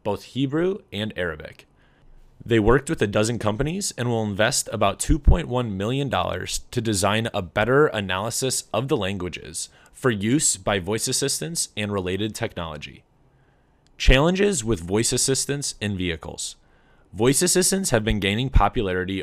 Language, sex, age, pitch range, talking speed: English, male, 20-39, 100-130 Hz, 135 wpm